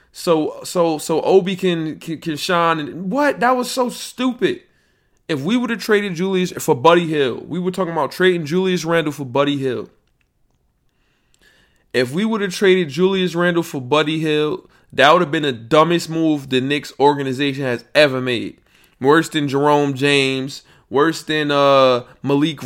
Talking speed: 170 wpm